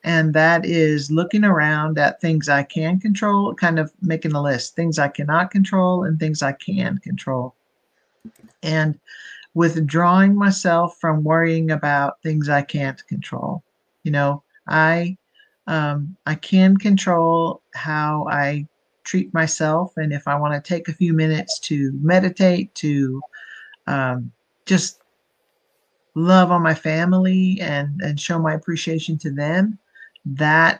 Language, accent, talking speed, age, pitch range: English, American, 140 wpm, 50-69, 150-180 Hz